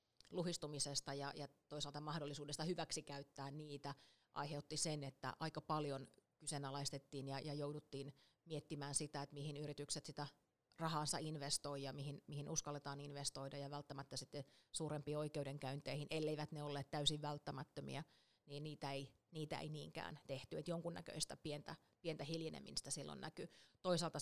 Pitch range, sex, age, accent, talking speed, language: 145-165 Hz, female, 30-49, native, 135 wpm, Finnish